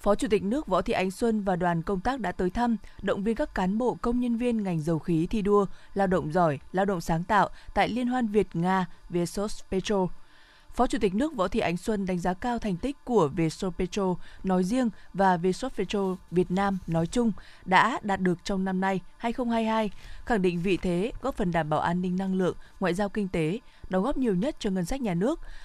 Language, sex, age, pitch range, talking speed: Vietnamese, female, 20-39, 170-220 Hz, 225 wpm